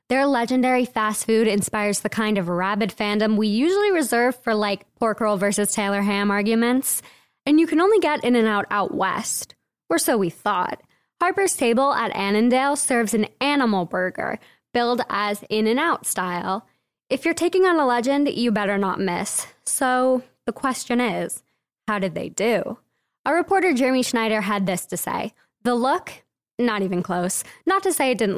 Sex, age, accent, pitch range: female, 10-29, American, 200-255 Hz